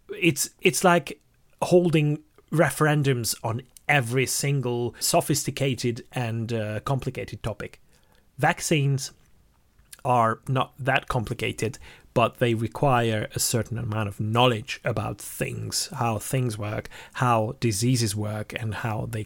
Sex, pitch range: male, 115-145 Hz